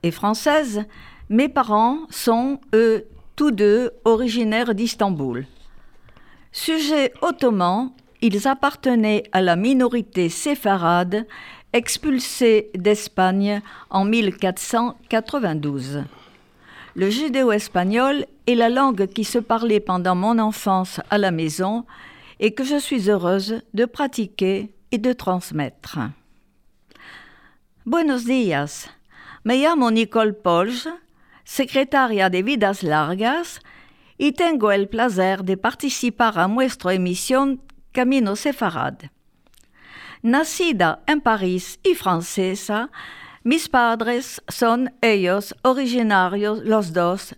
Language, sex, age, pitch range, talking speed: French, female, 50-69, 190-255 Hz, 100 wpm